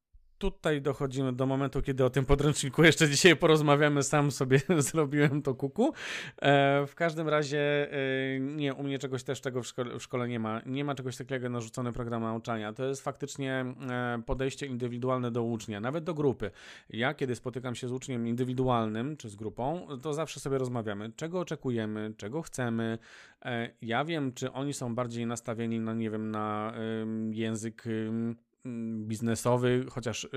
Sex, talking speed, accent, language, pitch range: male, 160 wpm, native, Polish, 115-140 Hz